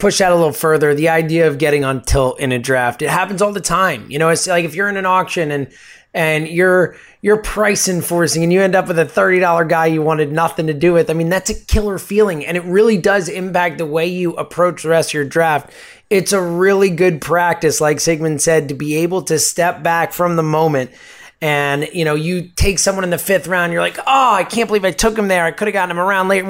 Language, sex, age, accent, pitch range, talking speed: English, male, 20-39, American, 155-190 Hz, 255 wpm